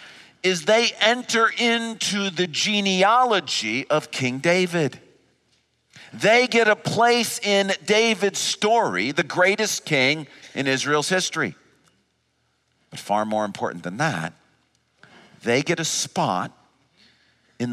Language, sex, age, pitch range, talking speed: English, male, 50-69, 145-215 Hz, 110 wpm